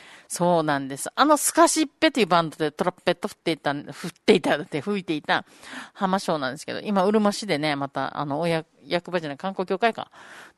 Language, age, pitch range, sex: Japanese, 40-59, 165-230 Hz, female